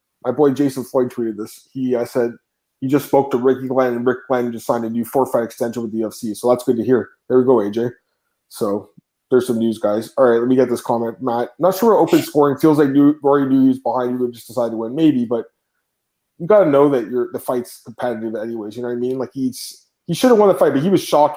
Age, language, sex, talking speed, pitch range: 20-39, English, male, 265 wpm, 120-160 Hz